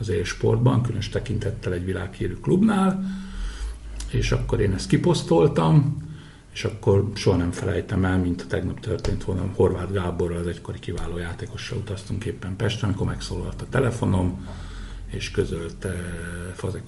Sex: male